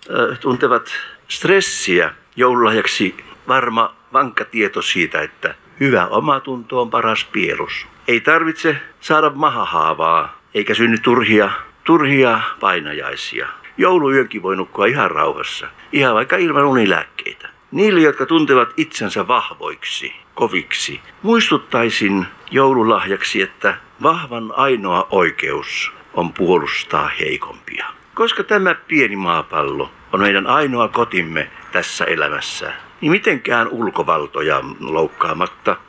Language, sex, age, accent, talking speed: Finnish, male, 60-79, native, 100 wpm